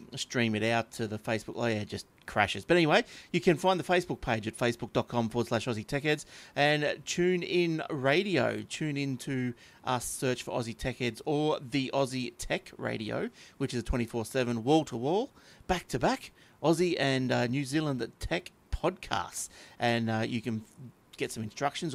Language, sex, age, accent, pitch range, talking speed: English, male, 30-49, Australian, 120-155 Hz, 185 wpm